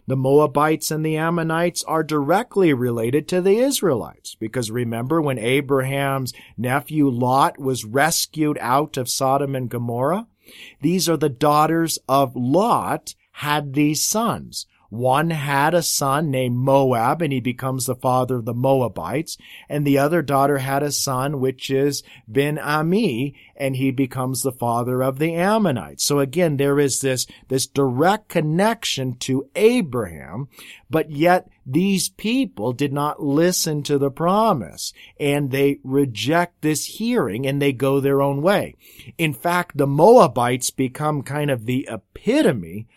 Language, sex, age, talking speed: English, male, 40-59, 150 wpm